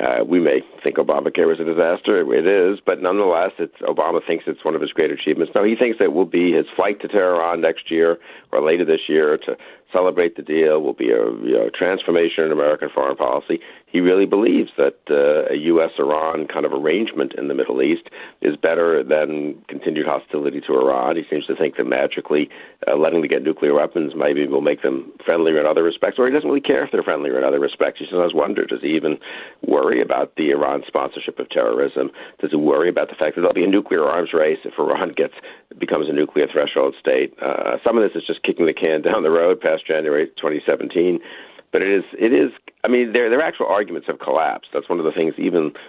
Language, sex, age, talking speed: English, male, 50-69, 230 wpm